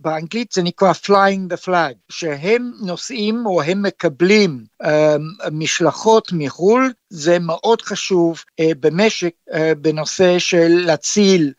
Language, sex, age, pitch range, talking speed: Hebrew, male, 60-79, 160-205 Hz, 120 wpm